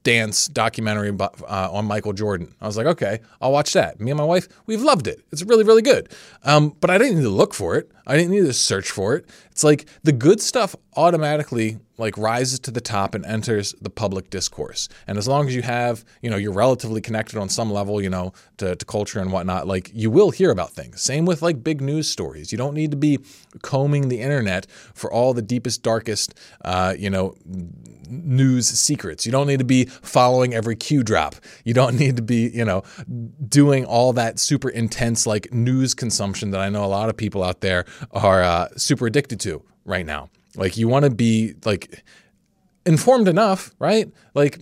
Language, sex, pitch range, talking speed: English, male, 105-145 Hz, 210 wpm